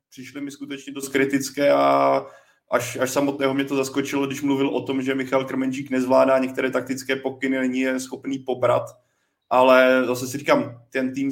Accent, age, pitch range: native, 20-39, 125-135 Hz